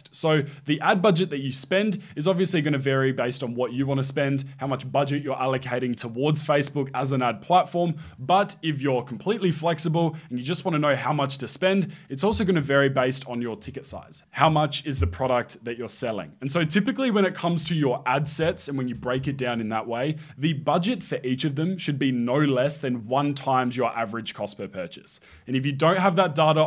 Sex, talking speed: male, 240 wpm